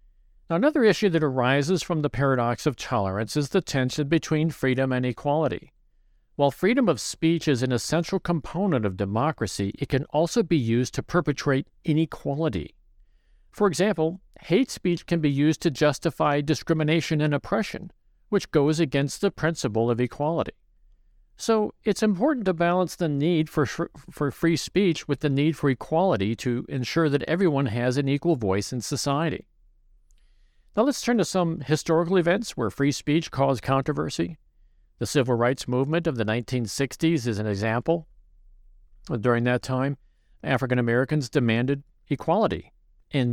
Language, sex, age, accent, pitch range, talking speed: English, male, 50-69, American, 125-165 Hz, 150 wpm